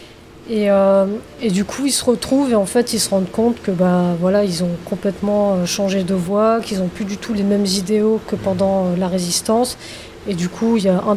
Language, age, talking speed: French, 20-39, 240 wpm